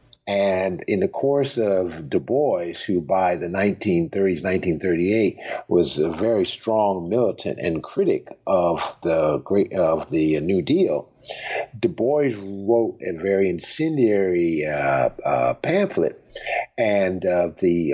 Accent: American